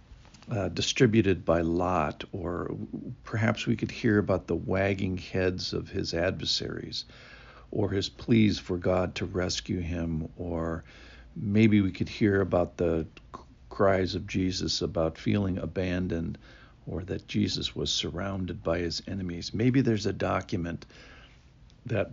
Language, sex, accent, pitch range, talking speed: English, male, American, 85-100 Hz, 135 wpm